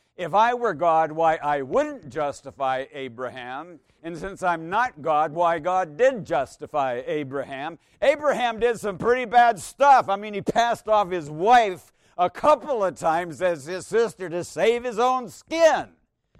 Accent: American